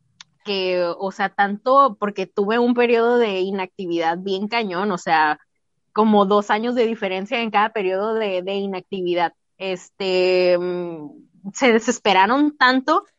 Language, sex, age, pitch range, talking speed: Spanish, female, 20-39, 195-245 Hz, 130 wpm